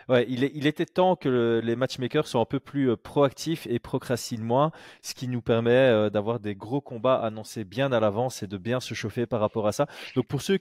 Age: 20-39